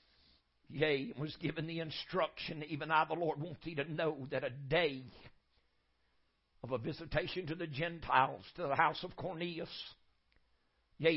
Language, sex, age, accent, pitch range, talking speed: English, male, 60-79, American, 125-165 Hz, 155 wpm